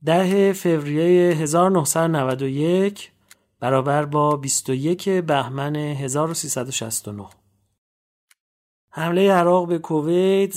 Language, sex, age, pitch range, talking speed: English, male, 40-59, 140-180 Hz, 70 wpm